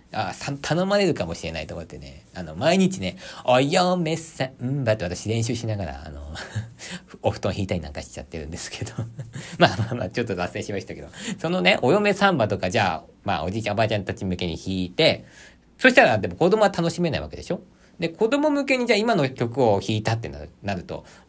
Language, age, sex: Japanese, 40-59, male